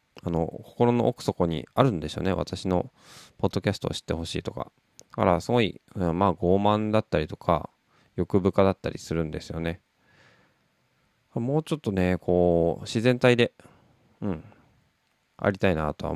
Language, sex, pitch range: Japanese, male, 85-125 Hz